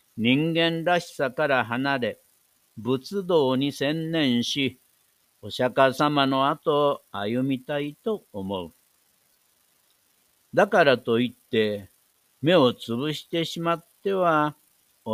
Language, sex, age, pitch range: Japanese, male, 60-79, 120-160 Hz